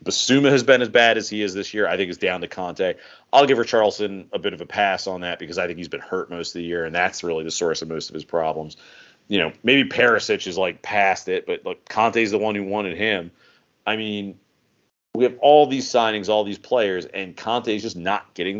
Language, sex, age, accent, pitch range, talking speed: English, male, 40-59, American, 100-135 Hz, 250 wpm